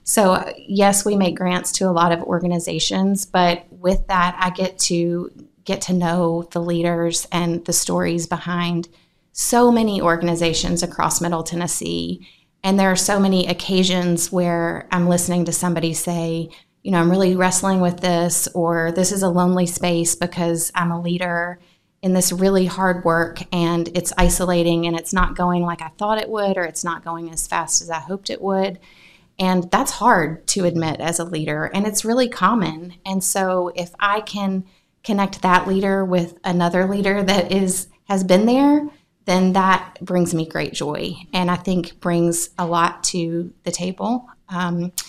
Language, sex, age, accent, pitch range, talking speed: English, female, 30-49, American, 170-190 Hz, 175 wpm